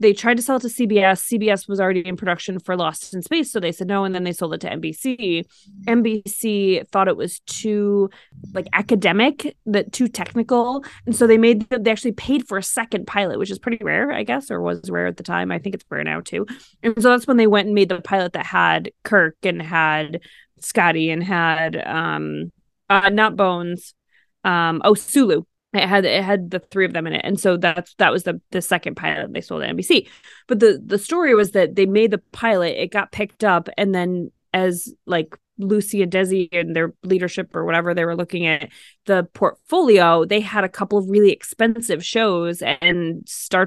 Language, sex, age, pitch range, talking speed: English, female, 20-39, 180-230 Hz, 215 wpm